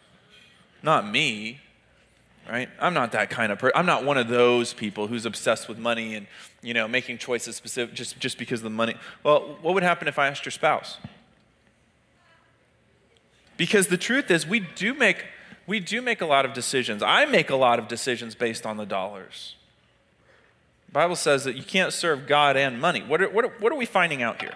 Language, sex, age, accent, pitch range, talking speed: English, male, 30-49, American, 120-170 Hz, 205 wpm